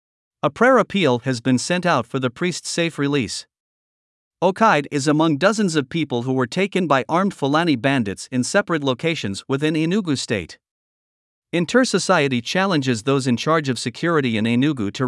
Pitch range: 130-175 Hz